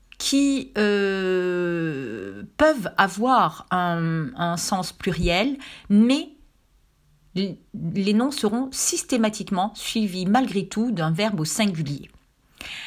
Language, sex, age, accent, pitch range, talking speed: French, female, 40-59, French, 170-225 Hz, 95 wpm